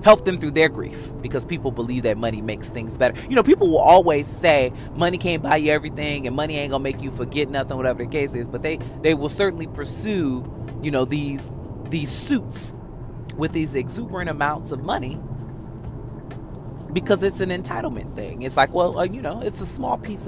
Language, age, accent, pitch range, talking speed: English, 30-49, American, 125-160 Hz, 205 wpm